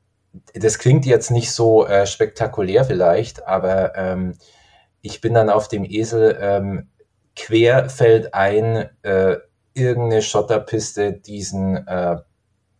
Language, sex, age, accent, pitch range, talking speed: German, male, 20-39, German, 100-120 Hz, 115 wpm